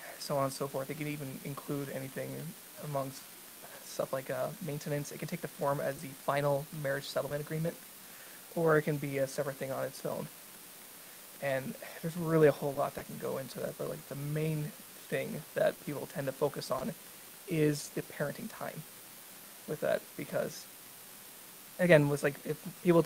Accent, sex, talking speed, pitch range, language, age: American, male, 180 wpm, 140-155 Hz, English, 20-39